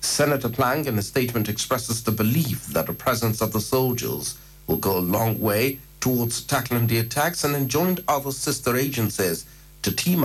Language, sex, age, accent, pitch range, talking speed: English, male, 60-79, South African, 105-130 Hz, 175 wpm